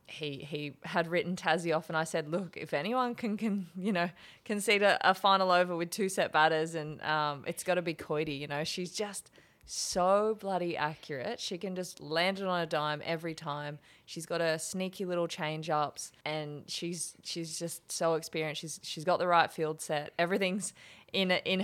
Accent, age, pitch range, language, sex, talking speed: Australian, 20-39, 155-185 Hz, English, female, 200 wpm